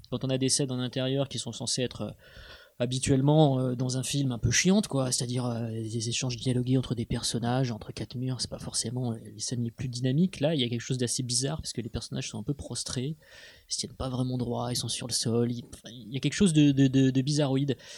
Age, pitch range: 20-39, 120-140 Hz